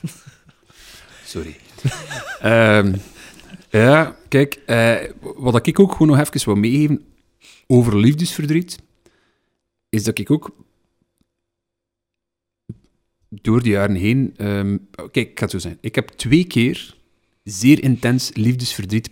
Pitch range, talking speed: 100-135 Hz, 115 wpm